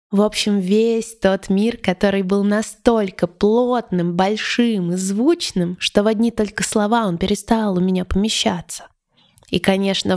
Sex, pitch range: female, 180-210 Hz